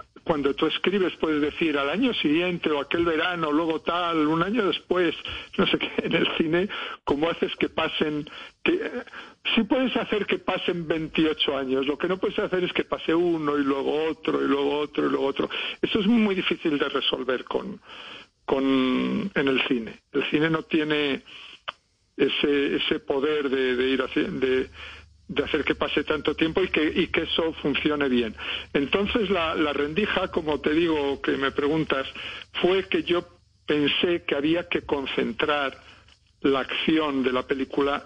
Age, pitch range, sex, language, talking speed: 60-79, 140-175 Hz, male, Spanish, 180 wpm